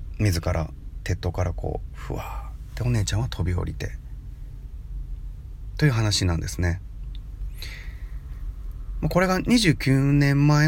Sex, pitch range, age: male, 85-140 Hz, 30-49